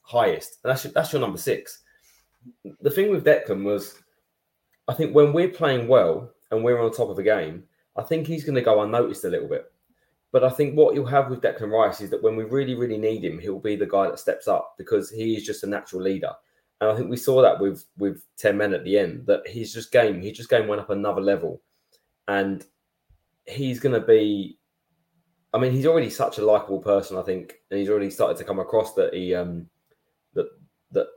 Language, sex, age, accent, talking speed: English, male, 20-39, British, 225 wpm